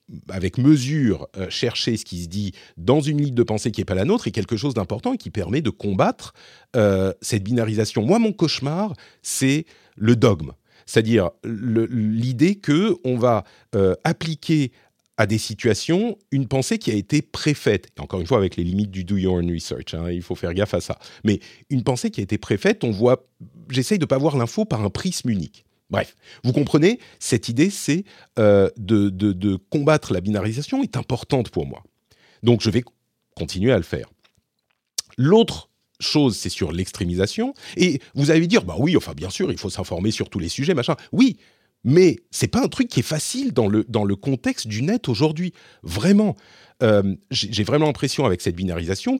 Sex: male